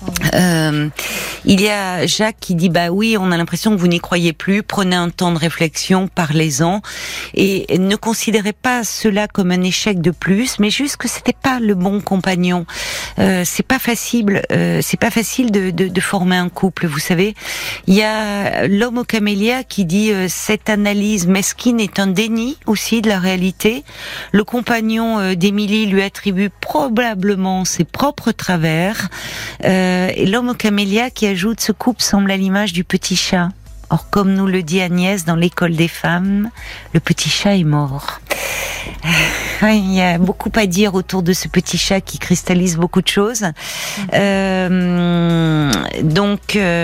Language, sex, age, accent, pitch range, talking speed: French, female, 40-59, French, 170-210 Hz, 175 wpm